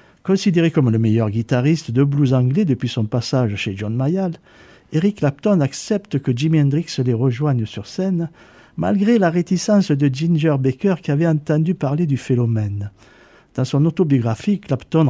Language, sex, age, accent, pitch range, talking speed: French, male, 50-69, French, 125-165 Hz, 160 wpm